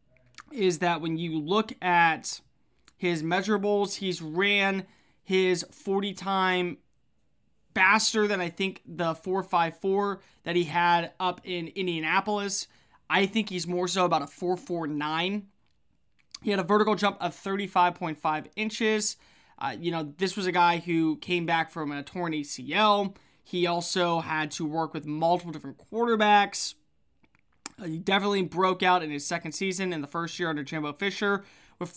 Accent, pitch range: American, 165-200 Hz